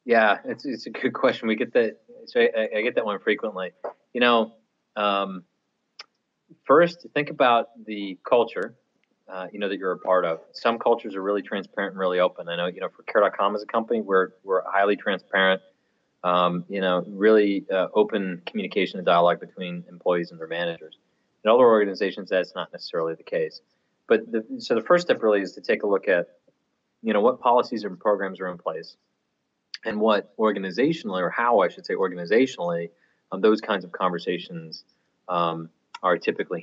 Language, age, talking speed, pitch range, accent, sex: English, 30-49, 185 wpm, 90-110 Hz, American, male